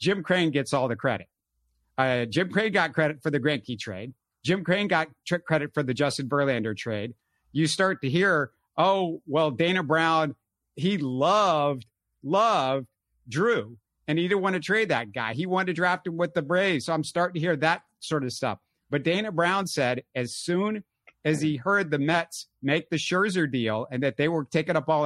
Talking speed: 205 wpm